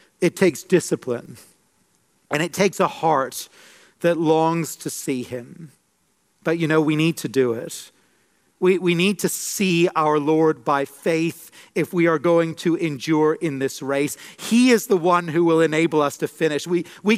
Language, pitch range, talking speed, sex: English, 150-180 Hz, 180 wpm, male